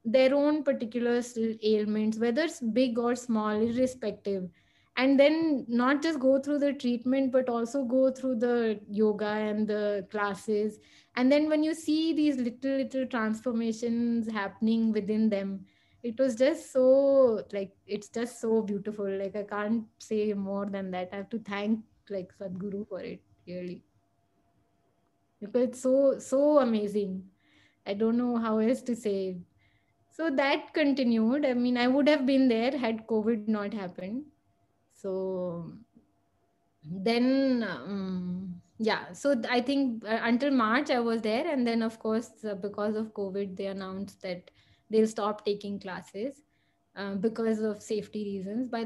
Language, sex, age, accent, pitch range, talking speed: English, female, 20-39, Indian, 200-250 Hz, 150 wpm